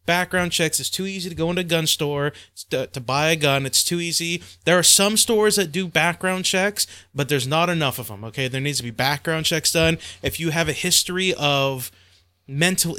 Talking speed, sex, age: 215 wpm, male, 20-39